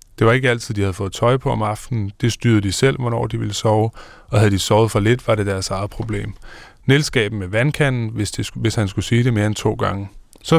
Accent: native